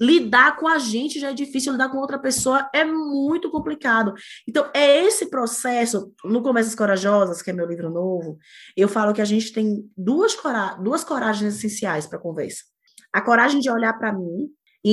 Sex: female